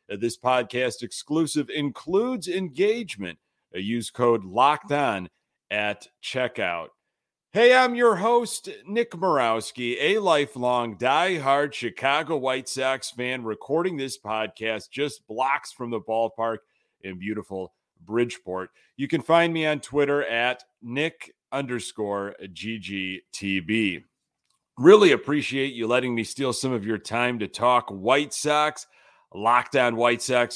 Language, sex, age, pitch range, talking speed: English, male, 40-59, 110-145 Hz, 125 wpm